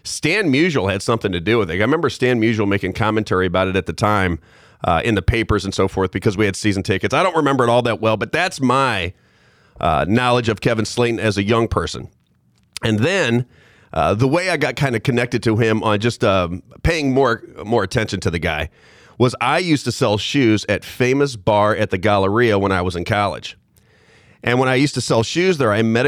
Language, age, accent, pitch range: English, 40-59, American, 100-130 Hz